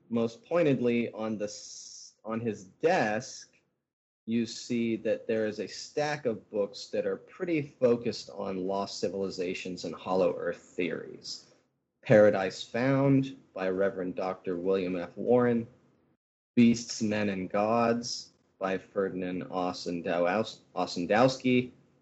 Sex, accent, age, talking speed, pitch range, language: male, American, 30-49, 115 wpm, 95-125 Hz, English